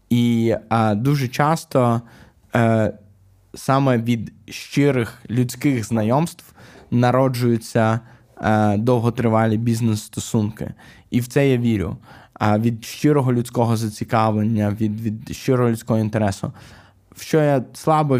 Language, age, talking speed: Ukrainian, 20-39, 110 wpm